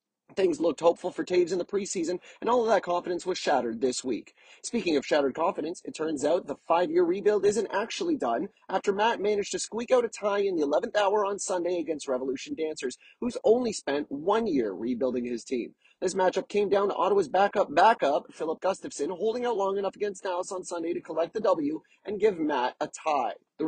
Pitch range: 160-225 Hz